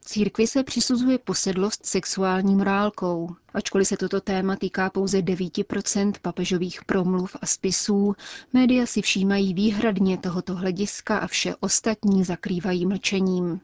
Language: Czech